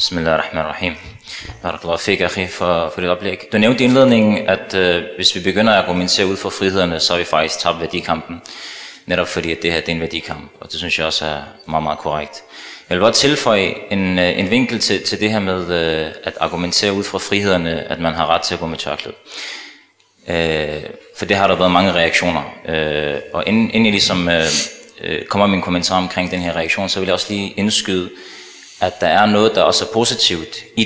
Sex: male